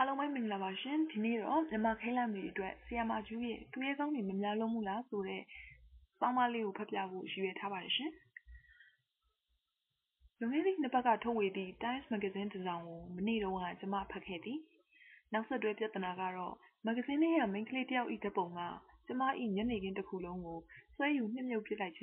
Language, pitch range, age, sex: English, 190-260 Hz, 20-39, female